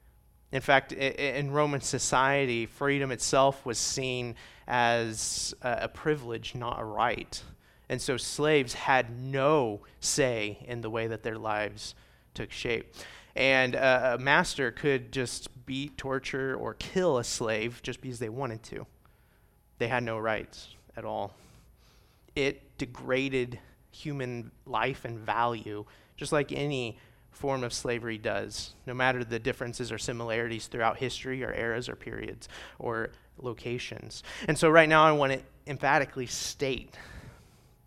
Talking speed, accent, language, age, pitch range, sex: 140 wpm, American, English, 30-49, 110-135 Hz, male